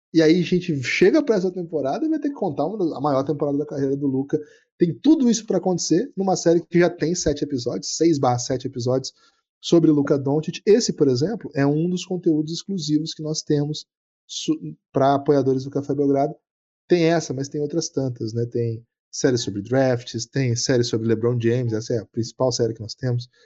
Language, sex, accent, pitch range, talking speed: Portuguese, male, Brazilian, 130-175 Hz, 210 wpm